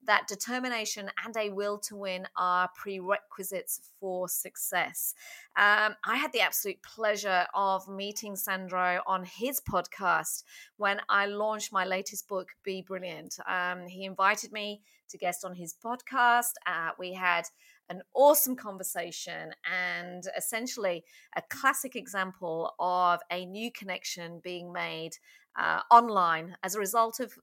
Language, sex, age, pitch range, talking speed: English, female, 30-49, 180-225 Hz, 140 wpm